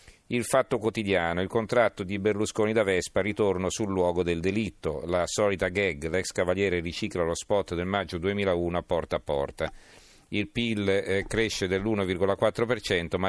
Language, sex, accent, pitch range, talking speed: Italian, male, native, 90-105 Hz, 160 wpm